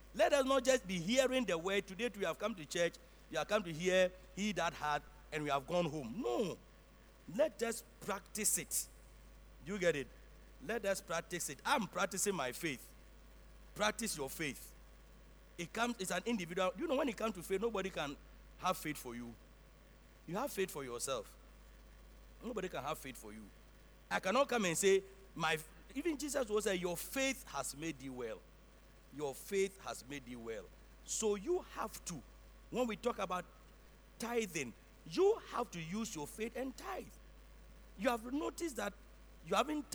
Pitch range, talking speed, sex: 155-235 Hz, 180 wpm, male